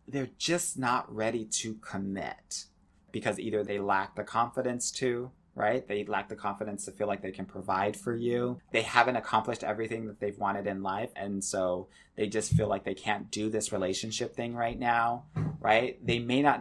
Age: 30-49